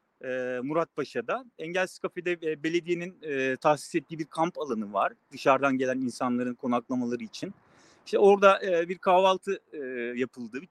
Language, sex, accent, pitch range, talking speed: Turkish, male, native, 135-205 Hz, 125 wpm